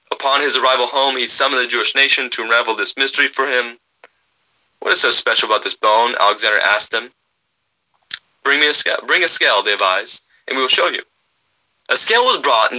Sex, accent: male, American